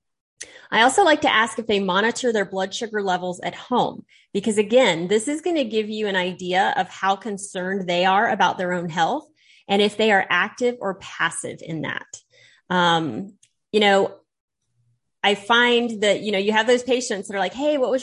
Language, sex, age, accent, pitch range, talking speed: English, female, 30-49, American, 185-240 Hz, 200 wpm